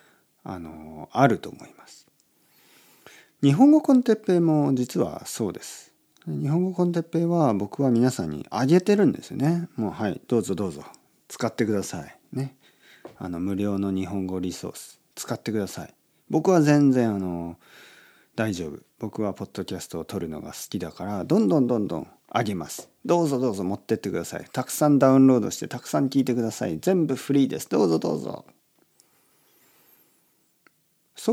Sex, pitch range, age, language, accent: male, 95-150 Hz, 50-69, Japanese, native